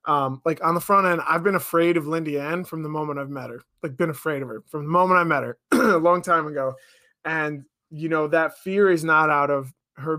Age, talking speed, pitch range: 20-39, 255 wpm, 140-170 Hz